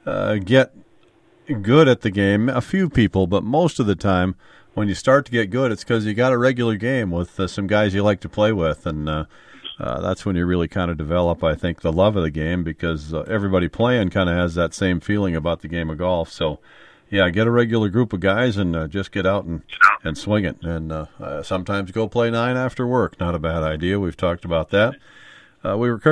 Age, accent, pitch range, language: 50-69, American, 85-105 Hz, English